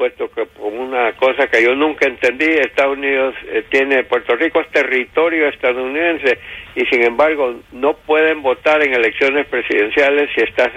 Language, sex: Spanish, male